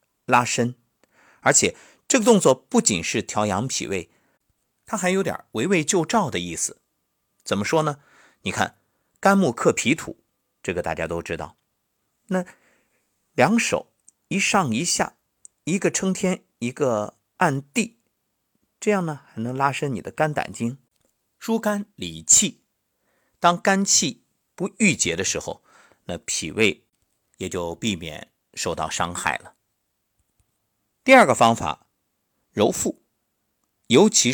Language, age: Chinese, 50-69